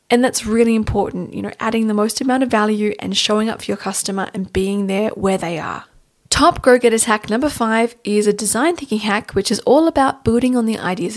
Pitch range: 205-255 Hz